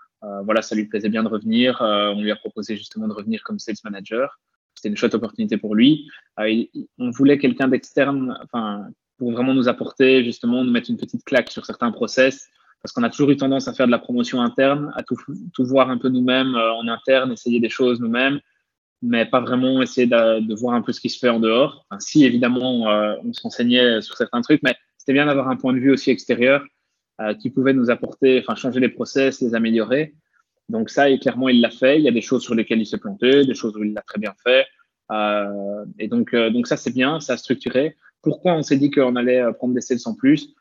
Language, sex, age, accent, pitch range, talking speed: French, male, 20-39, French, 115-140 Hz, 235 wpm